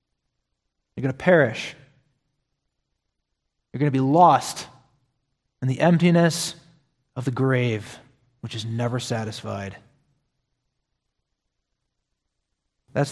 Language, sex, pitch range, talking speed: English, male, 120-135 Hz, 90 wpm